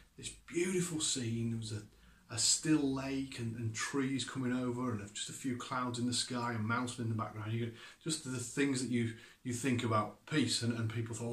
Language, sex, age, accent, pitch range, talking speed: English, male, 30-49, British, 115-190 Hz, 220 wpm